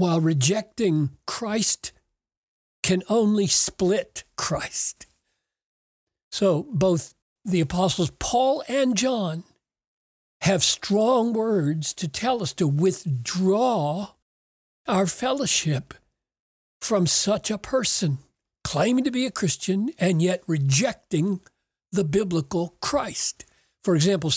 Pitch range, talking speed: 165-220 Hz, 100 wpm